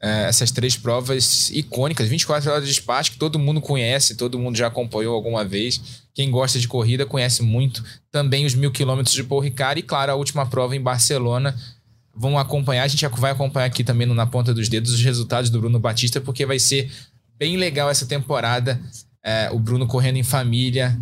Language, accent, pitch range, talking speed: Portuguese, Brazilian, 115-140 Hz, 195 wpm